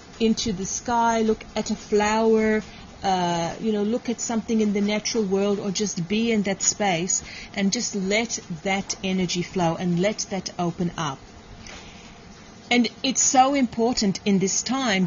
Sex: female